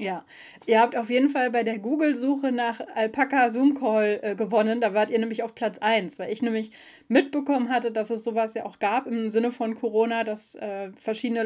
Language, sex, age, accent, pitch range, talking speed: German, female, 20-39, German, 215-250 Hz, 195 wpm